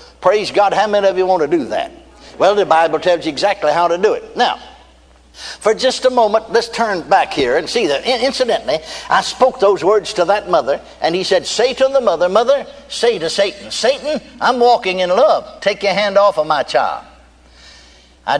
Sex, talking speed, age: male, 210 wpm, 60-79